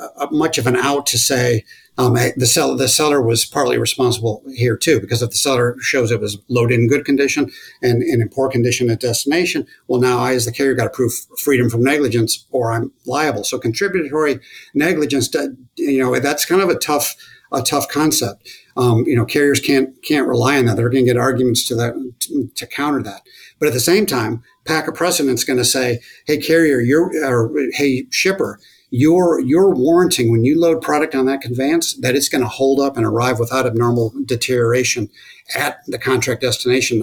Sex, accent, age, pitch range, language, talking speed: male, American, 50-69, 120-145 Hz, English, 200 wpm